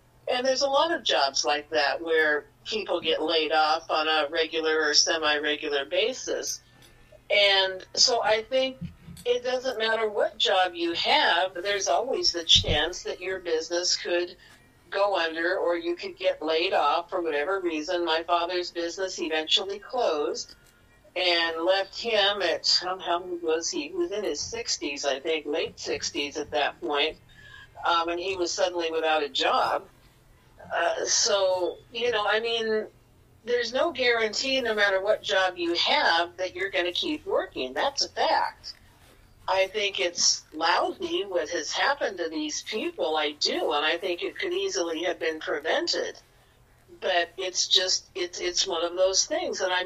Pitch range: 165-230 Hz